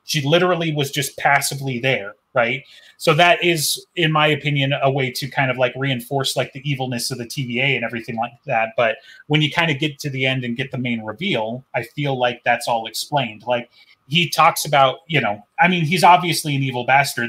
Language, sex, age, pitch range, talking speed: English, male, 30-49, 125-150 Hz, 220 wpm